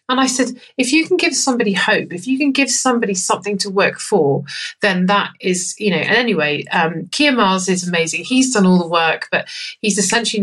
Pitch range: 180-205 Hz